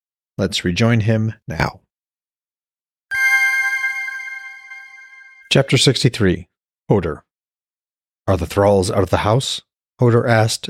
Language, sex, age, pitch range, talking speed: English, male, 40-59, 90-120 Hz, 90 wpm